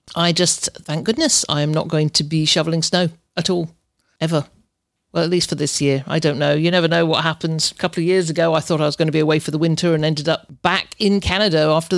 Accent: British